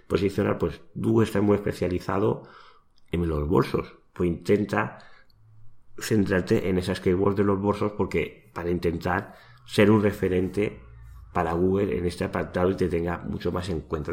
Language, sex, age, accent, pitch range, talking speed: Spanish, male, 30-49, Spanish, 85-105 Hz, 155 wpm